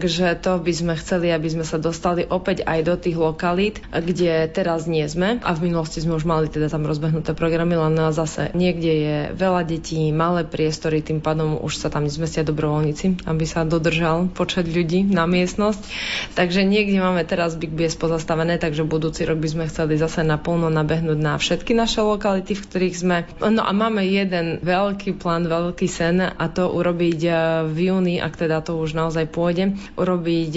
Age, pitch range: 20-39, 160-180 Hz